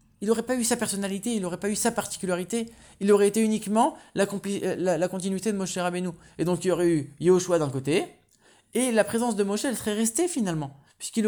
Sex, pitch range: male, 140-200 Hz